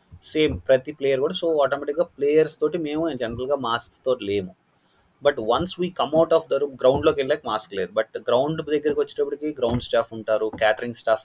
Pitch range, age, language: 125-160 Hz, 30-49, Telugu